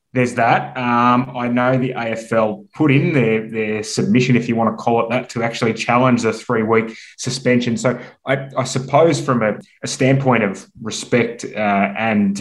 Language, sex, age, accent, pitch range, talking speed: English, male, 20-39, Australian, 110-135 Hz, 185 wpm